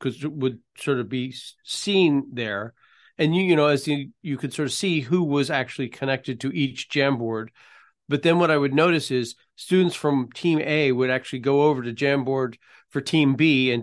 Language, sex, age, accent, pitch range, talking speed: English, male, 40-59, American, 125-160 Hz, 205 wpm